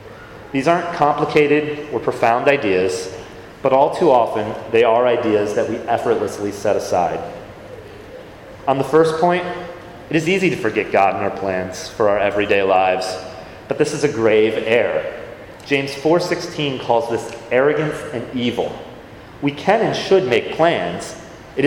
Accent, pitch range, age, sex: American, 115-160 Hz, 30-49, male